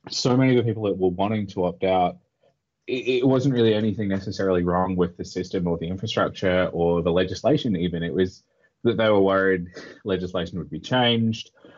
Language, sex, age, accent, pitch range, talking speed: English, male, 20-39, Australian, 85-100 Hz, 195 wpm